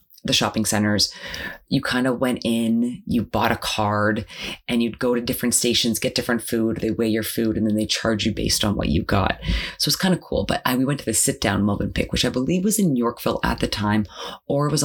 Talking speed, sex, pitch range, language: 245 wpm, female, 105-140 Hz, English